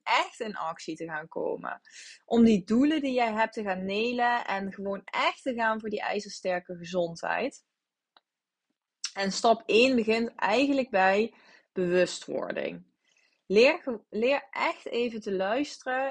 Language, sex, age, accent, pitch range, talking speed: Dutch, female, 20-39, Dutch, 195-250 Hz, 140 wpm